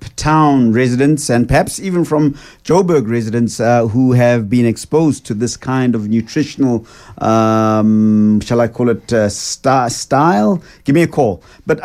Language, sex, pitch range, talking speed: English, male, 120-140 Hz, 150 wpm